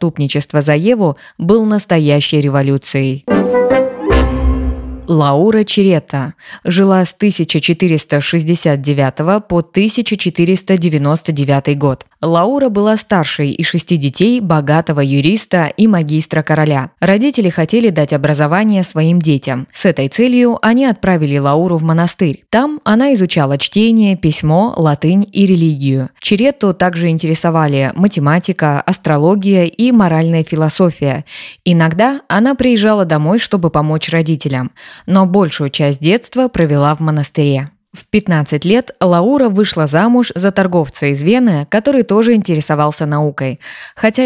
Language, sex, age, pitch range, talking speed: Russian, female, 20-39, 150-205 Hz, 115 wpm